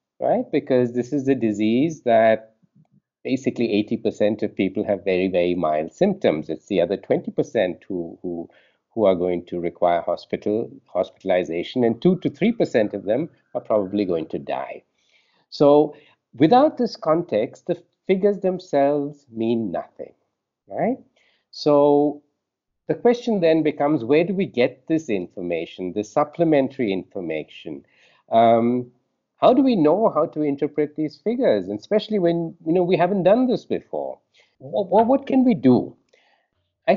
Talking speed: 150 wpm